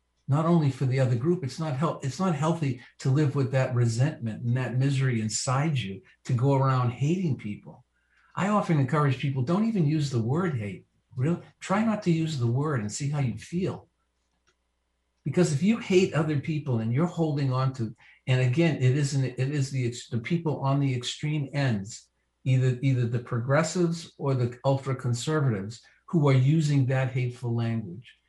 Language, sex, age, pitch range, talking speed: English, male, 50-69, 120-155 Hz, 185 wpm